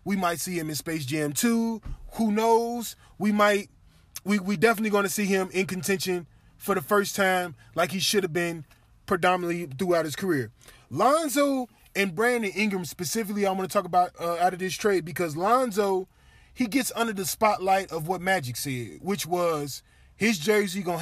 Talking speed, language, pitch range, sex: 185 wpm, English, 165-230 Hz, male